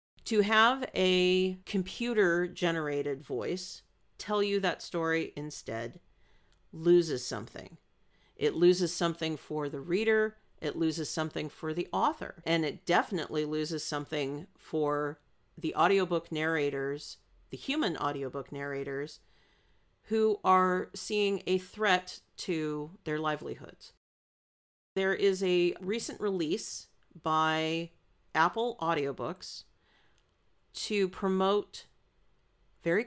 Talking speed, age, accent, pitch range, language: 100 wpm, 50-69, American, 150-190 Hz, English